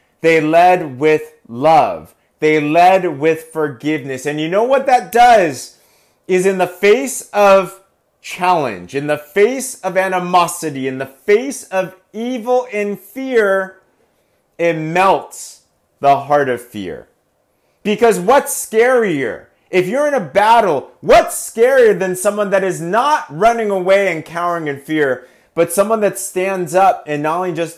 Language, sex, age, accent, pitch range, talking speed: English, male, 30-49, American, 130-195 Hz, 145 wpm